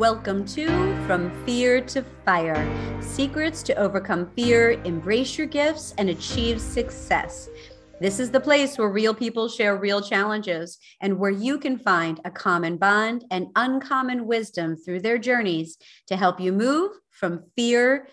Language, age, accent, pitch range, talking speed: English, 40-59, American, 205-270 Hz, 150 wpm